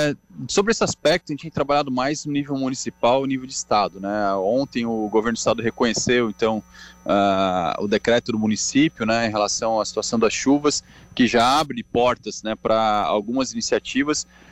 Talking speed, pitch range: 175 wpm, 105-130 Hz